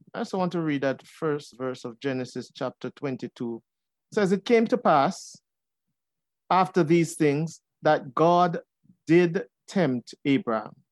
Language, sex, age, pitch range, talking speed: English, male, 50-69, 135-180 Hz, 145 wpm